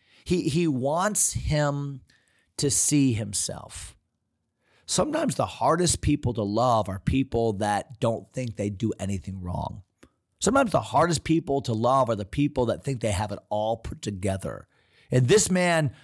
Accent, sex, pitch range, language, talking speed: American, male, 110-150 Hz, English, 155 wpm